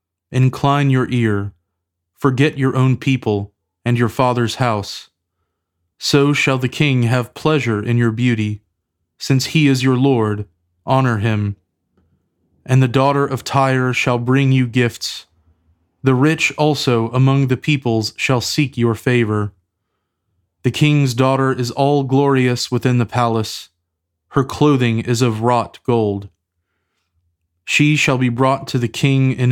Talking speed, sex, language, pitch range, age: 140 wpm, male, English, 100-135 Hz, 20-39